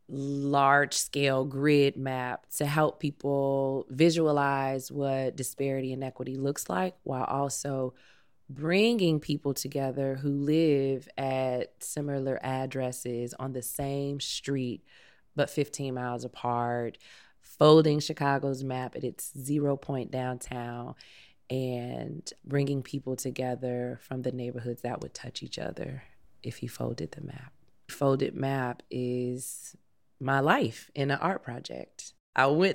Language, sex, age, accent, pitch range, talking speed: English, female, 20-39, American, 130-140 Hz, 125 wpm